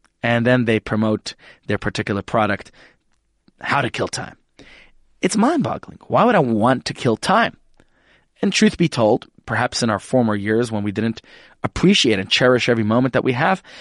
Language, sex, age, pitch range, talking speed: English, male, 20-39, 120-190 Hz, 175 wpm